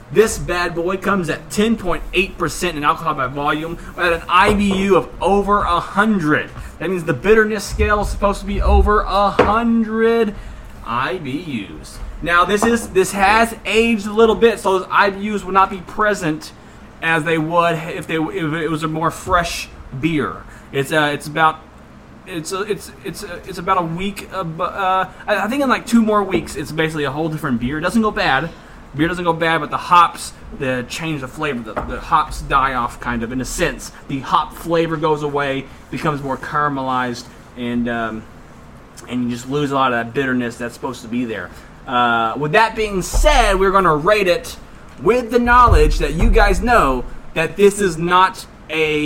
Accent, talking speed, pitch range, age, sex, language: American, 195 wpm, 140-195 Hz, 20-39, male, English